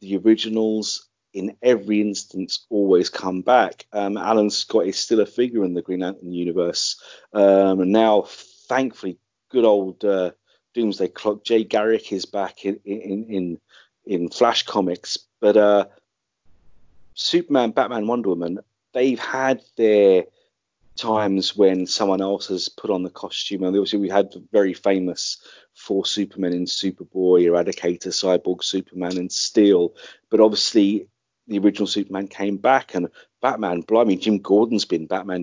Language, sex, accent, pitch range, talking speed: English, male, British, 95-110 Hz, 145 wpm